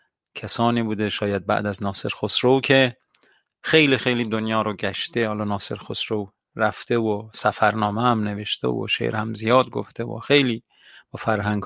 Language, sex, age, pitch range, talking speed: Persian, male, 40-59, 105-125 Hz, 155 wpm